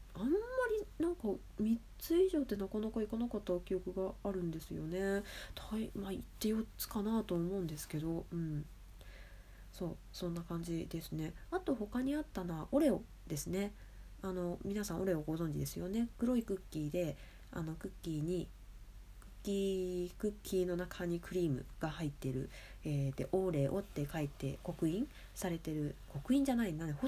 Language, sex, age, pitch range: Japanese, female, 20-39, 150-205 Hz